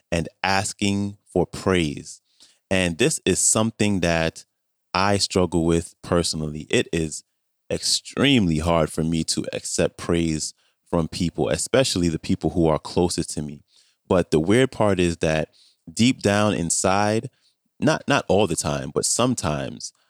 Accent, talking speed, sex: American, 145 wpm, male